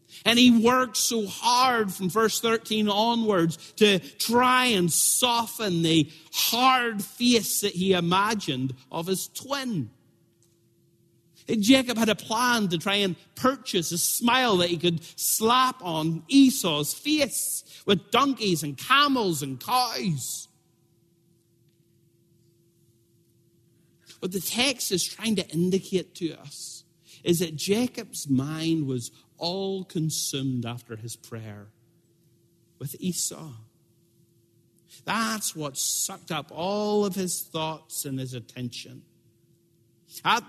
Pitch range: 140-195 Hz